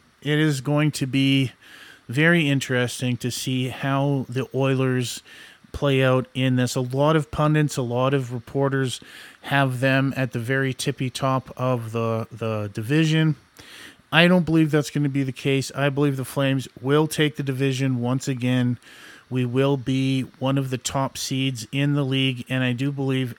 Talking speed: 175 wpm